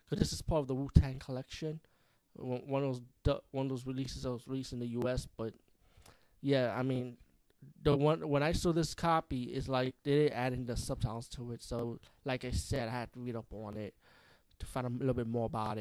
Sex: male